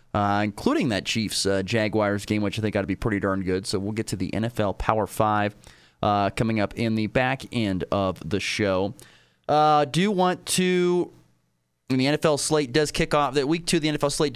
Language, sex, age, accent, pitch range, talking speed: English, male, 30-49, American, 110-150 Hz, 205 wpm